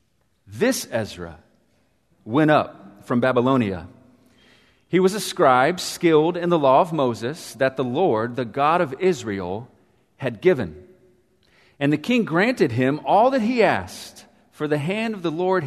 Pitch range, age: 115-170 Hz, 40-59